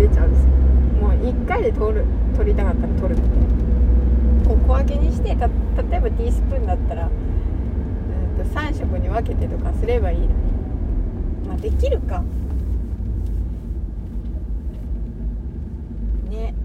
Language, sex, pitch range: Japanese, female, 75-80 Hz